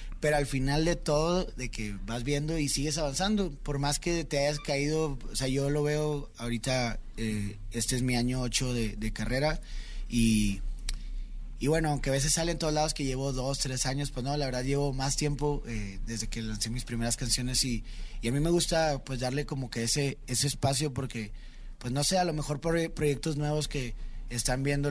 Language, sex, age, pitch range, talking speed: Spanish, male, 20-39, 120-150 Hz, 210 wpm